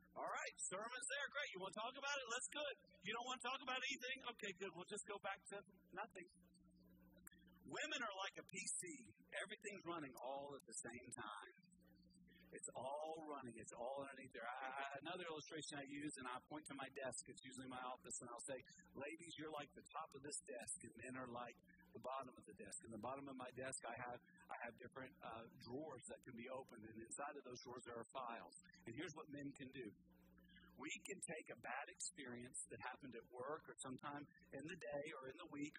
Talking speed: 220 wpm